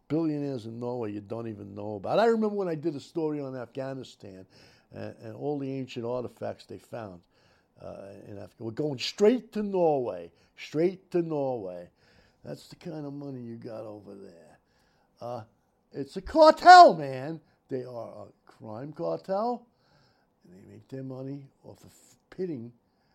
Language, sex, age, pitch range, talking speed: English, male, 60-79, 100-140 Hz, 165 wpm